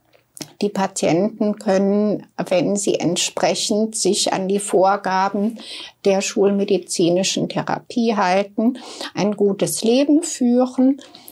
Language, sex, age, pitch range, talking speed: English, female, 60-79, 200-255 Hz, 95 wpm